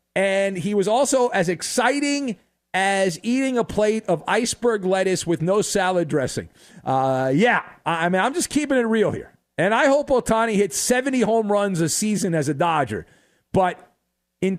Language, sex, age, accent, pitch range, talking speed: English, male, 40-59, American, 155-240 Hz, 175 wpm